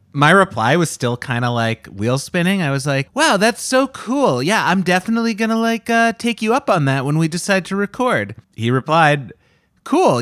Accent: American